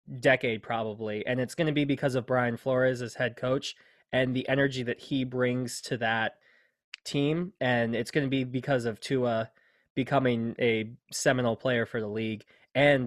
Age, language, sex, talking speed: 20-39, English, male, 180 wpm